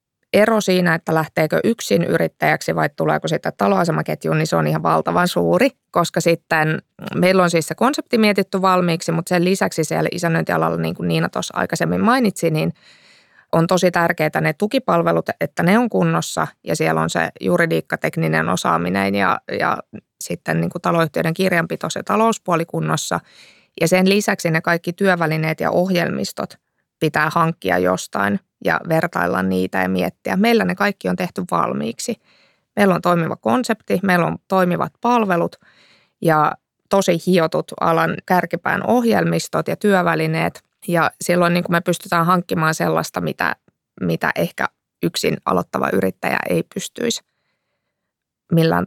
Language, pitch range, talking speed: Finnish, 155-190 Hz, 140 wpm